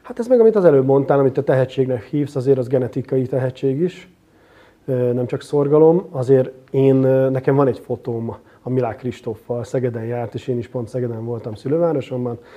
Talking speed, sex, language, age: 175 wpm, male, Hungarian, 30-49